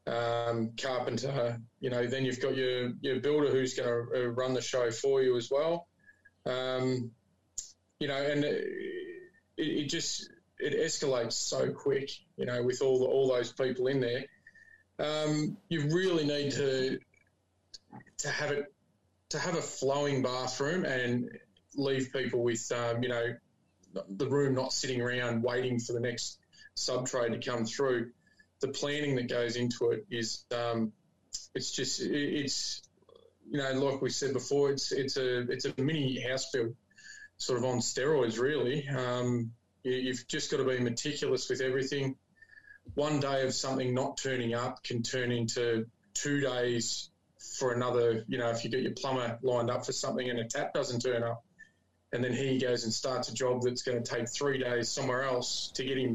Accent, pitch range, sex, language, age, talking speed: Australian, 120-140 Hz, male, English, 20-39, 175 wpm